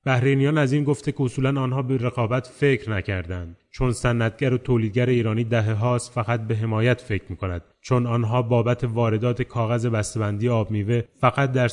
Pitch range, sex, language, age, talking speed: 105-125 Hz, male, Persian, 30-49, 170 wpm